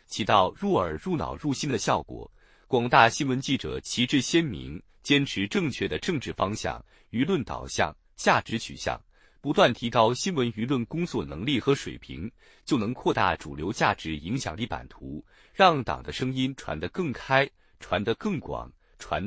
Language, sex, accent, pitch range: Chinese, male, native, 105-155 Hz